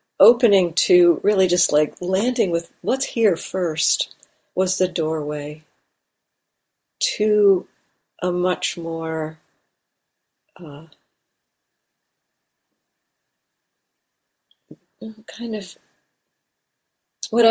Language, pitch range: English, 160-185 Hz